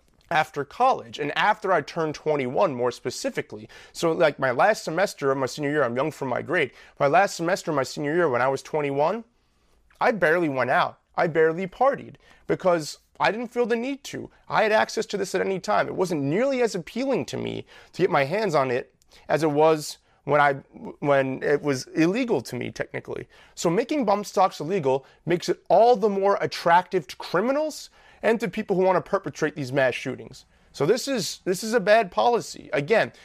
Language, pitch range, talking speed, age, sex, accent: English, 150-210 Hz, 200 wpm, 30-49, male, American